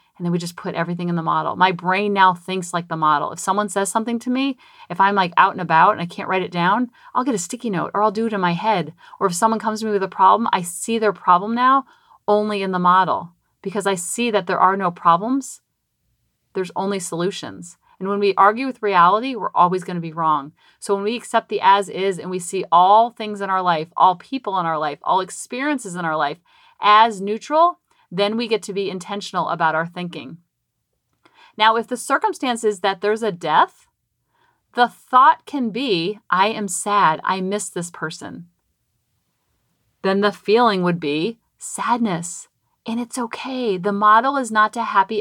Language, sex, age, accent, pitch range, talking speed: English, female, 30-49, American, 180-235 Hz, 210 wpm